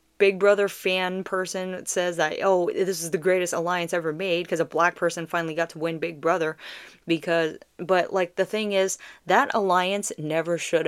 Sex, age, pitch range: female, 10-29, 165-185 Hz